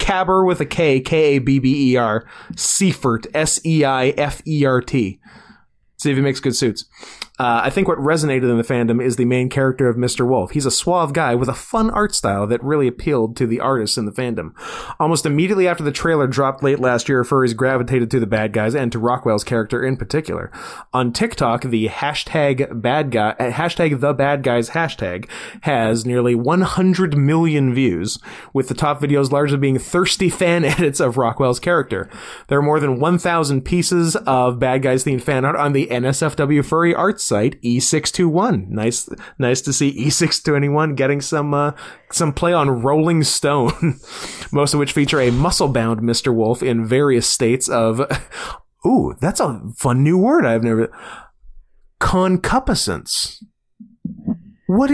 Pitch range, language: 125-165 Hz, English